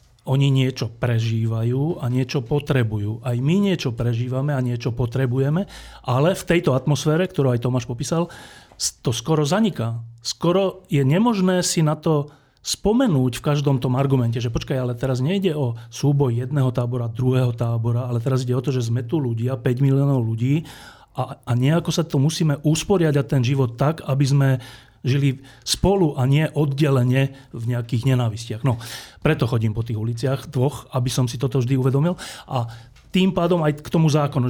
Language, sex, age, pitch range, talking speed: Slovak, male, 40-59, 125-150 Hz, 170 wpm